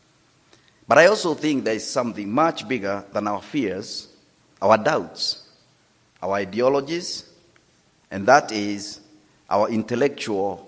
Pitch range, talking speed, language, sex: 105-145 Hz, 120 wpm, English, male